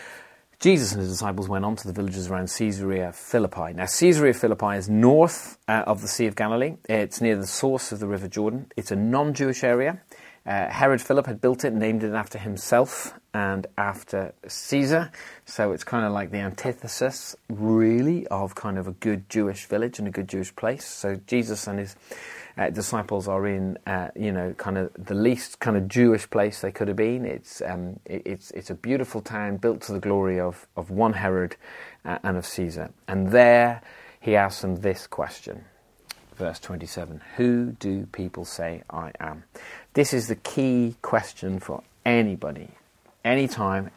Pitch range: 95-120 Hz